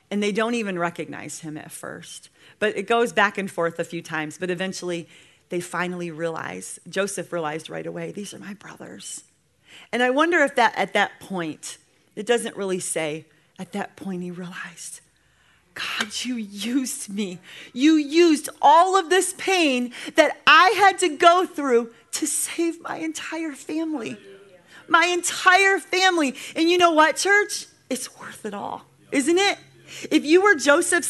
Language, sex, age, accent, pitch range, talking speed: English, female, 30-49, American, 230-350 Hz, 165 wpm